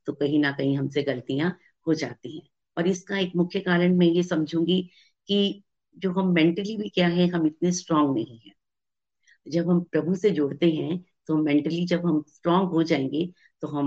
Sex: female